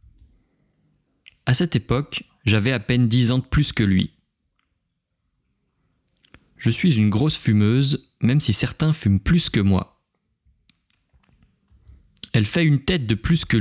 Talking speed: 135 wpm